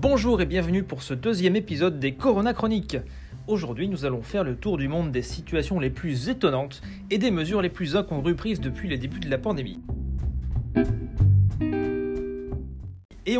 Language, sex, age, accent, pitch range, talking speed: French, male, 40-59, French, 130-185 Hz, 165 wpm